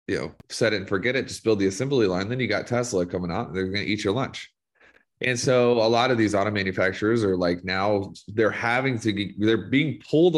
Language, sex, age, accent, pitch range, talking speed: English, male, 30-49, American, 90-115 Hz, 245 wpm